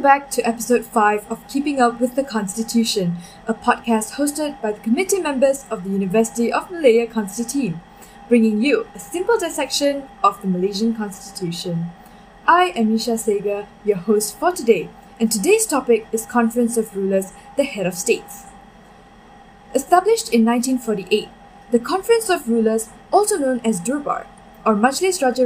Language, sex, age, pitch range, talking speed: English, female, 10-29, 205-275 Hz, 155 wpm